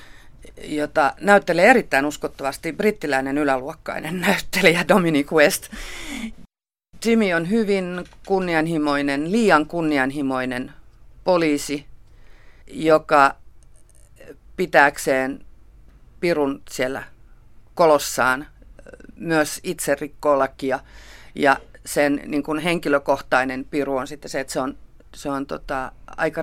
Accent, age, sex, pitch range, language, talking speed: native, 40-59, female, 140-170 Hz, Finnish, 90 wpm